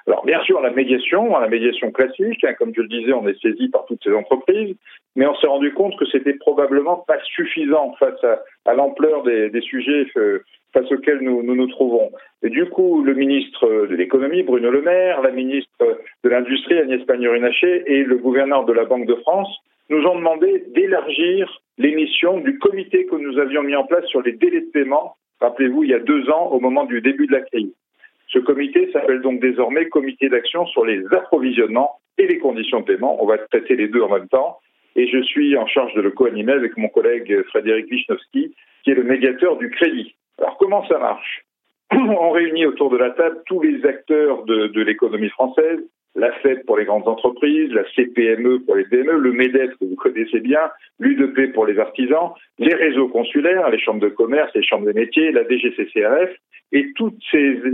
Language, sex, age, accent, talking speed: French, male, 40-59, French, 205 wpm